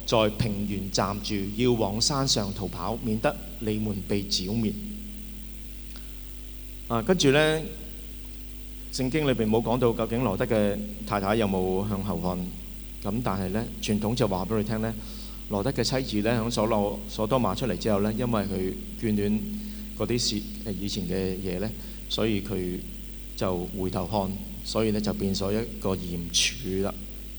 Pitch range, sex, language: 100-120 Hz, male, English